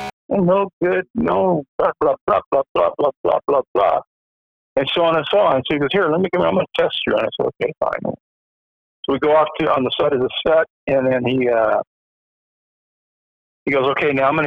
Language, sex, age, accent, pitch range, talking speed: English, male, 50-69, American, 110-135 Hz, 240 wpm